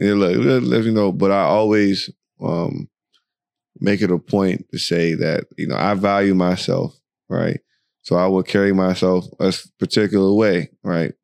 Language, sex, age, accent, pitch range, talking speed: English, male, 20-39, American, 90-105 Hz, 160 wpm